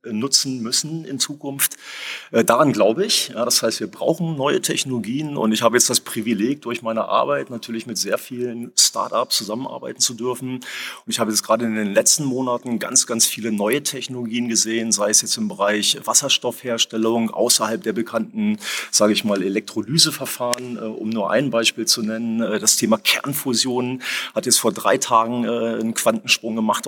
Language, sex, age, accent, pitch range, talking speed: German, male, 30-49, German, 110-130 Hz, 165 wpm